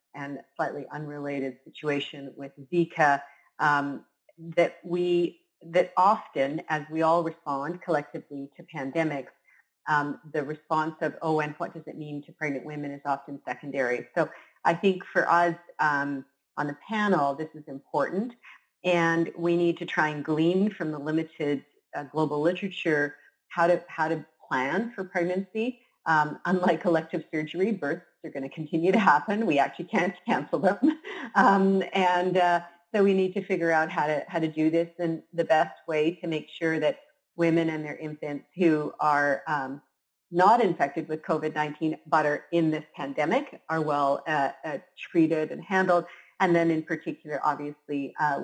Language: English